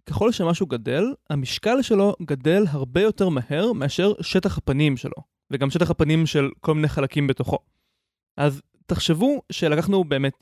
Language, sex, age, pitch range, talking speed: Hebrew, male, 20-39, 140-190 Hz, 145 wpm